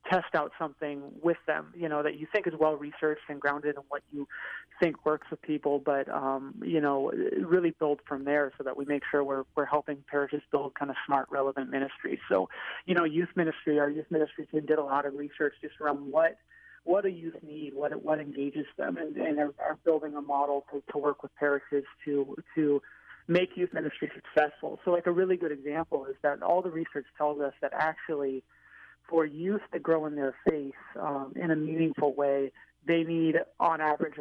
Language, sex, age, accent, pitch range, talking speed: English, male, 30-49, American, 145-165 Hz, 205 wpm